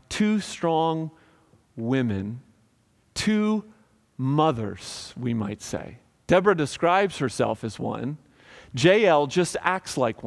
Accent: American